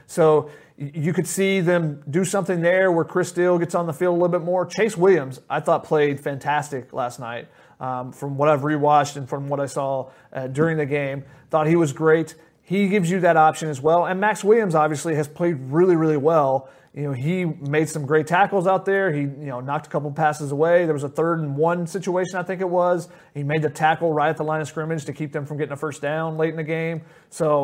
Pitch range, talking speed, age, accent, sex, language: 150-175 Hz, 240 wpm, 30-49, American, male, English